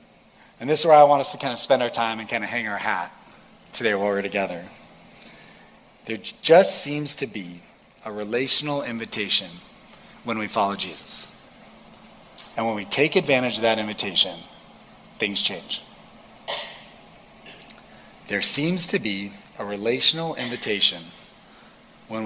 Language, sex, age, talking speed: English, male, 40-59, 145 wpm